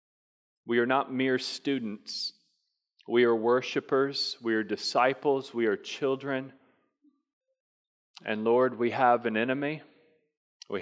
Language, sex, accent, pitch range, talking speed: English, male, American, 120-150 Hz, 115 wpm